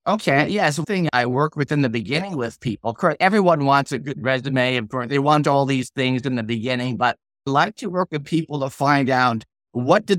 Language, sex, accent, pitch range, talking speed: English, male, American, 125-160 Hz, 240 wpm